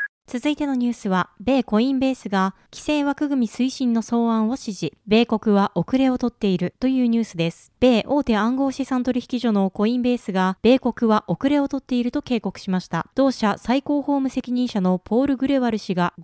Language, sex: Japanese, female